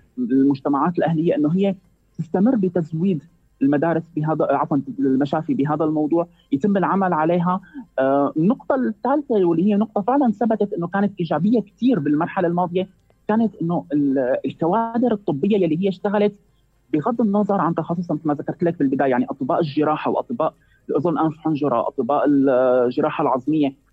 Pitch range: 155-195 Hz